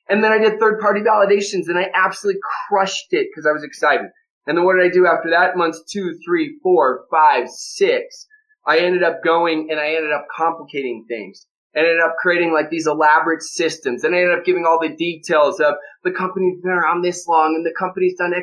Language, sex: English, male